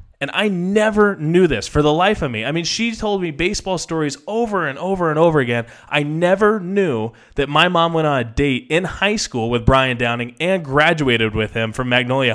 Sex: male